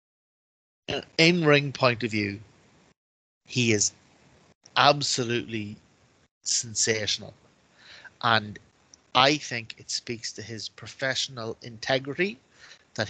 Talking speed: 85 wpm